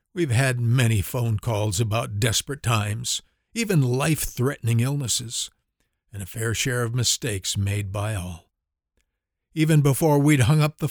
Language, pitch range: English, 105-140 Hz